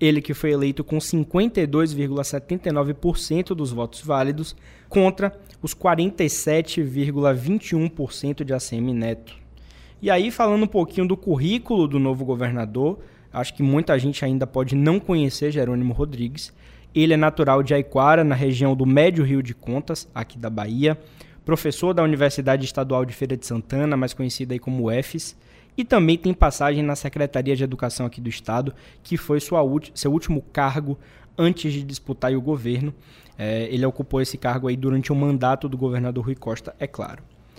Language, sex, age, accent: Portuguese, male, 20-39, Brazilian